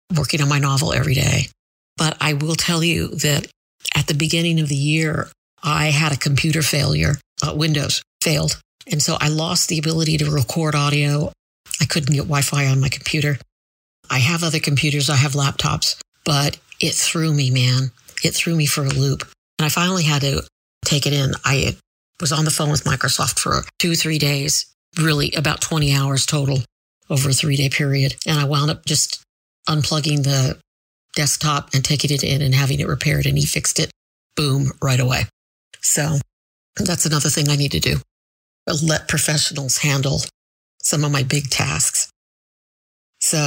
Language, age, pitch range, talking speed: English, 50-69, 135-155 Hz, 175 wpm